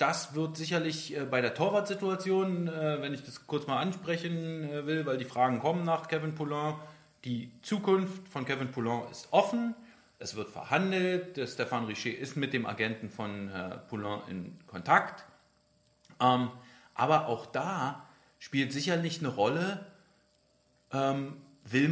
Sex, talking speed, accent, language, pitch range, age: male, 130 wpm, German, German, 135-180 Hz, 40-59